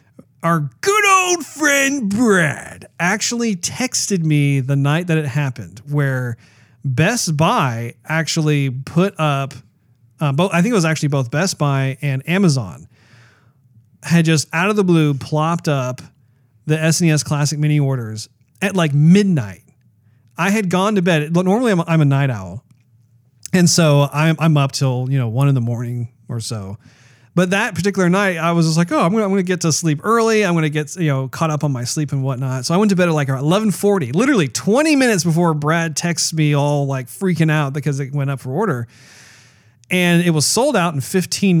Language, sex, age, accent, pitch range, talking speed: English, male, 40-59, American, 130-170 Hz, 190 wpm